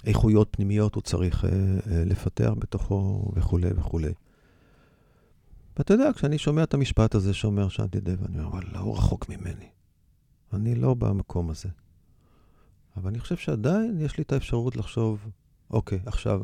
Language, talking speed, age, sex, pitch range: Hebrew, 150 wpm, 50-69, male, 90-115 Hz